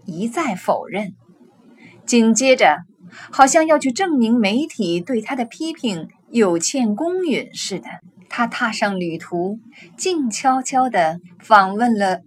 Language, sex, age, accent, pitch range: Chinese, female, 20-39, native, 190-275 Hz